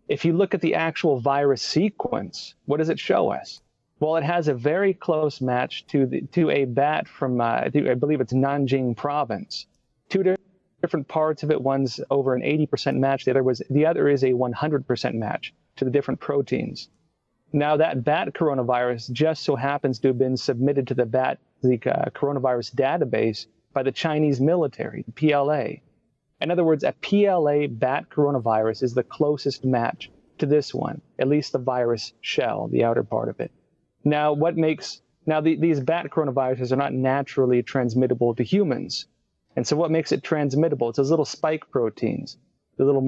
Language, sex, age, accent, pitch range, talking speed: English, male, 30-49, American, 125-150 Hz, 180 wpm